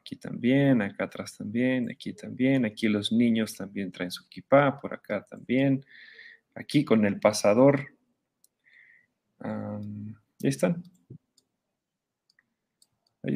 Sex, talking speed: male, 110 wpm